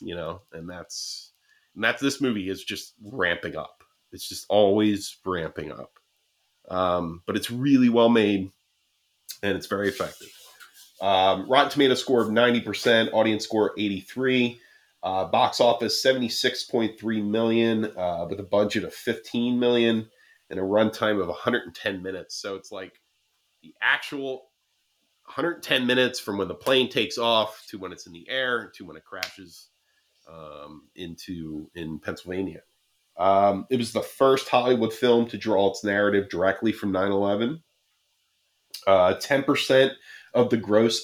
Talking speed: 145 wpm